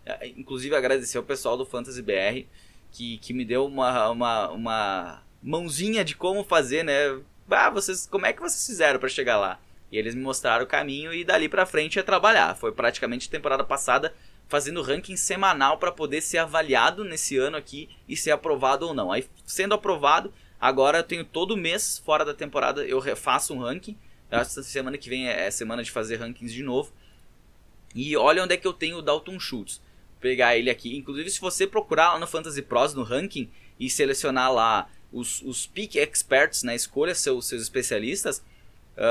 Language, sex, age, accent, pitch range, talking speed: Portuguese, male, 20-39, Brazilian, 130-200 Hz, 190 wpm